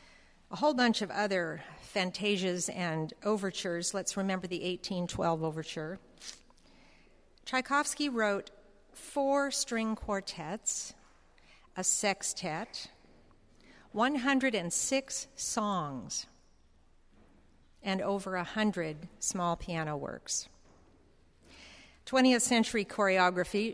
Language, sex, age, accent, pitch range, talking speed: English, female, 50-69, American, 170-215 Hz, 80 wpm